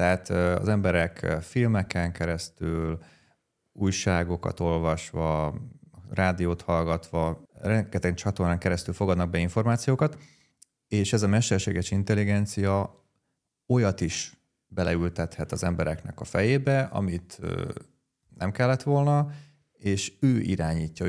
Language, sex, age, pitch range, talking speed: Hungarian, male, 30-49, 85-100 Hz, 95 wpm